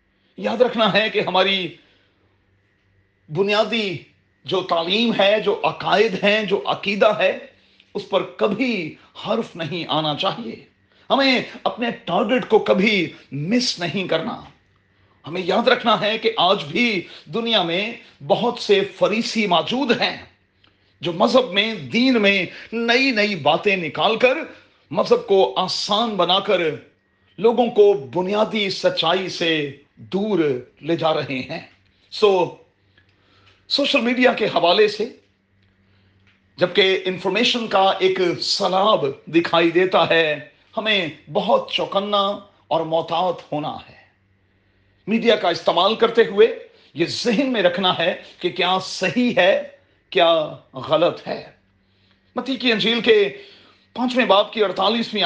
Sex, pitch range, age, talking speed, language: male, 160-220 Hz, 40-59, 125 wpm, Urdu